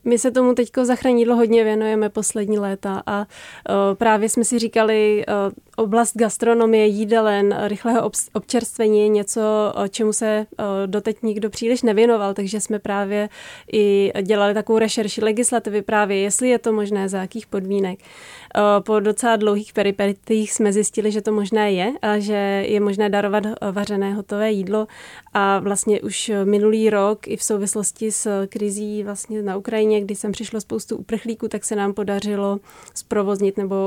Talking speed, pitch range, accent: 150 wpm, 205-220 Hz, native